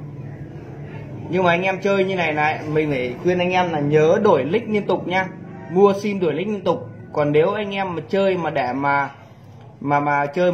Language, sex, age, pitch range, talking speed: Vietnamese, male, 20-39, 135-170 Hz, 215 wpm